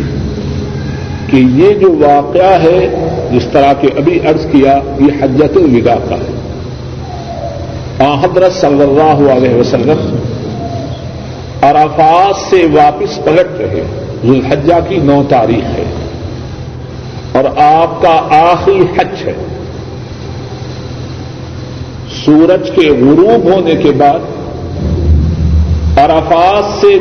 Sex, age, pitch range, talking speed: male, 50-69, 125-170 Hz, 105 wpm